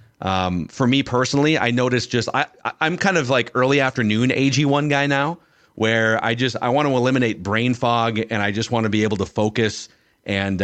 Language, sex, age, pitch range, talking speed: English, male, 30-49, 110-140 Hz, 220 wpm